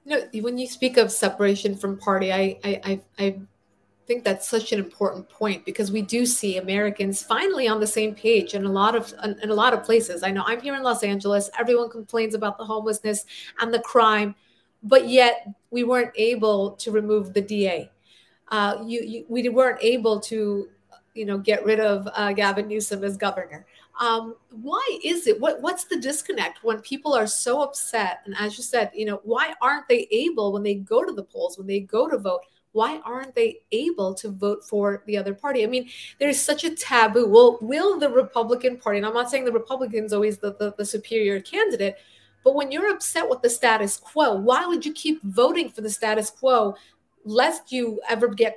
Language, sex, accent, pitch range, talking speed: English, female, American, 205-255 Hz, 205 wpm